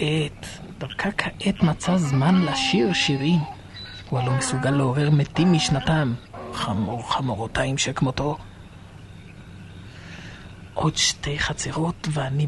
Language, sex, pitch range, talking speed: Hebrew, male, 100-140 Hz, 95 wpm